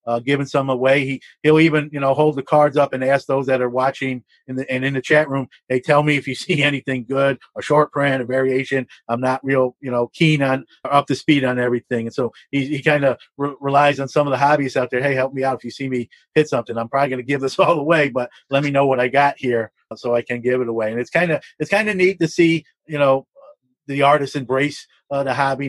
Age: 40-59